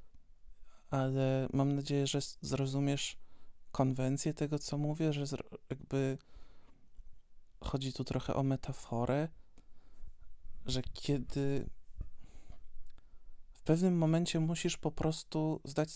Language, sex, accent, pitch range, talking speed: Polish, male, native, 125-150 Hz, 95 wpm